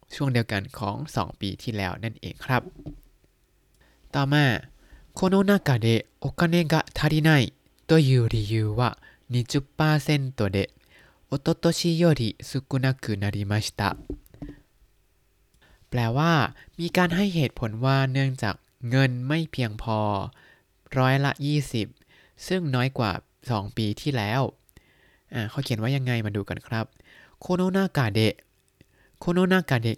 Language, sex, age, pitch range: Thai, male, 20-39, 110-150 Hz